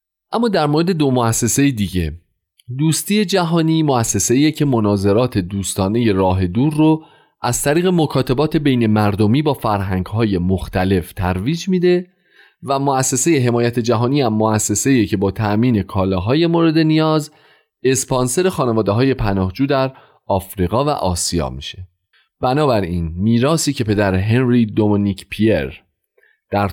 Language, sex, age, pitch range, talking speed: Persian, male, 30-49, 95-140 Hz, 125 wpm